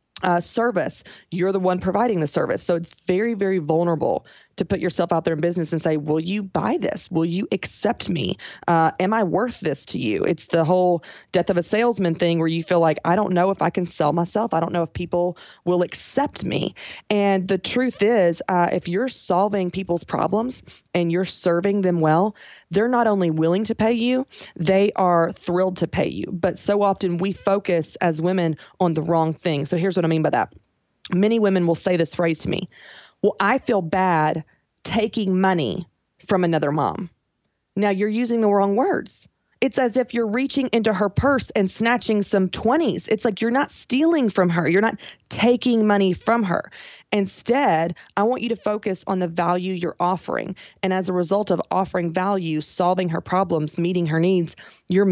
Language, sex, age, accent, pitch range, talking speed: English, female, 20-39, American, 170-205 Hz, 200 wpm